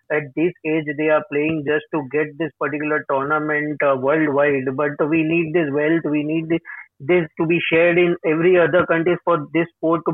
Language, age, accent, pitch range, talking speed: English, 20-39, Indian, 150-170 Hz, 200 wpm